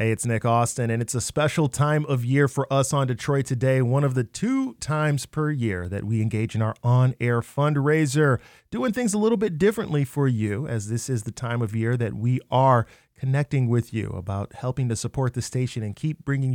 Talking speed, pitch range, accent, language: 220 wpm, 115-150 Hz, American, English